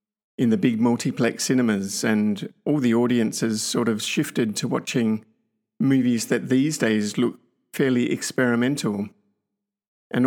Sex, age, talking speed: male, 50-69, 130 wpm